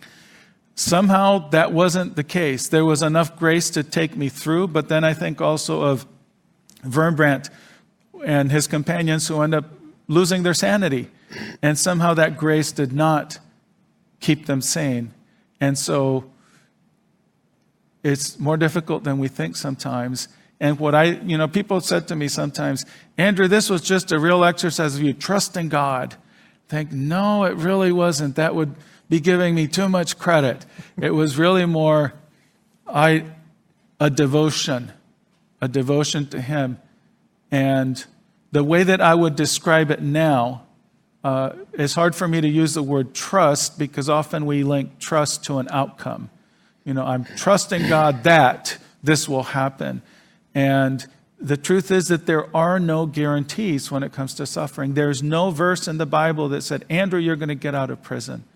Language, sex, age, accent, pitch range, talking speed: English, male, 50-69, American, 145-170 Hz, 165 wpm